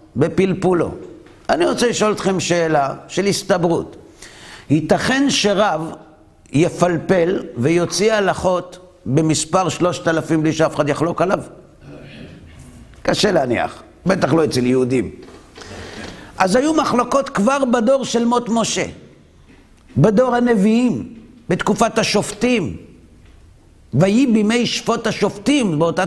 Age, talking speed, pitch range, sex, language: 50-69, 100 wpm, 130-205 Hz, male, Hebrew